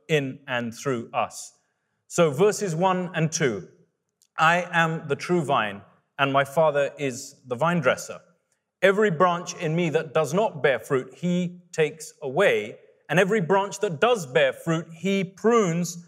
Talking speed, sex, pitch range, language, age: 155 wpm, male, 160-210 Hz, English, 30-49